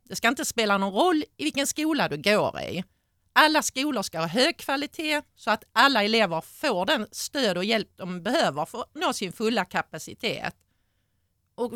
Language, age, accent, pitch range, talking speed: Swedish, 40-59, native, 190-275 Hz, 185 wpm